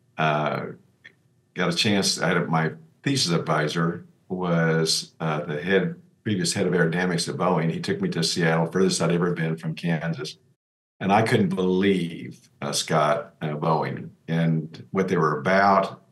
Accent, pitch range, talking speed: American, 80-95 Hz, 160 wpm